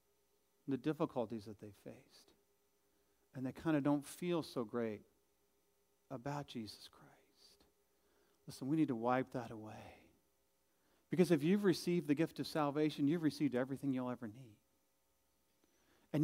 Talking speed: 140 wpm